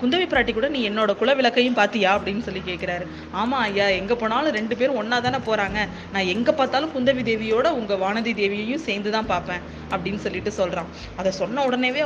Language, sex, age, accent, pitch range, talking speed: Tamil, female, 20-39, native, 195-245 Hz, 180 wpm